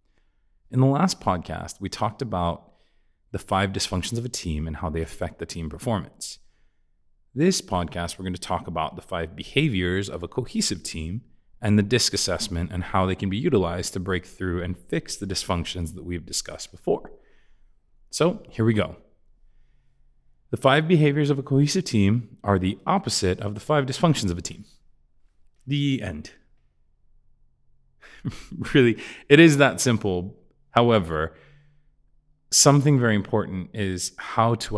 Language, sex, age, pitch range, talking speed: English, male, 30-49, 85-120 Hz, 155 wpm